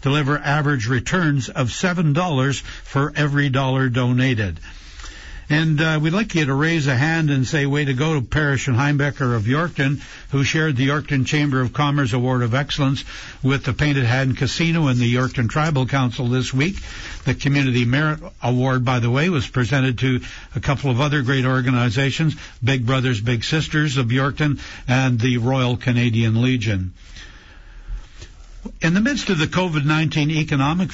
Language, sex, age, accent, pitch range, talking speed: English, male, 60-79, American, 125-150 Hz, 165 wpm